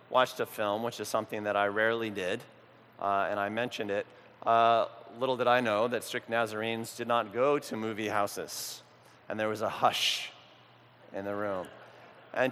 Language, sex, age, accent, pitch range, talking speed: English, male, 30-49, American, 105-125 Hz, 180 wpm